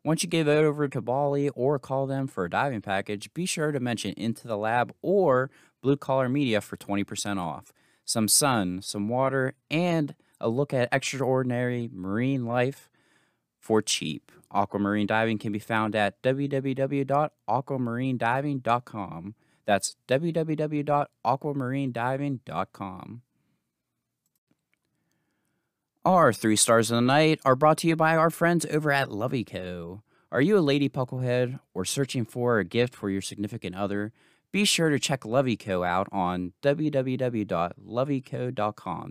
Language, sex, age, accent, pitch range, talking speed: English, male, 20-39, American, 105-140 Hz, 140 wpm